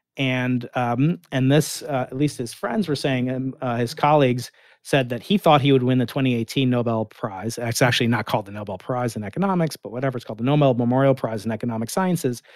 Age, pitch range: 40-59, 120-150 Hz